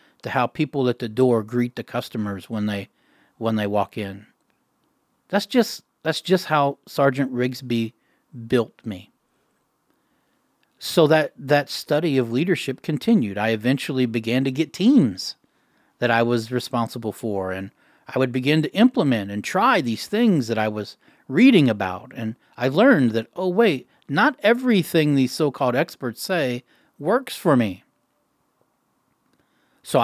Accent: American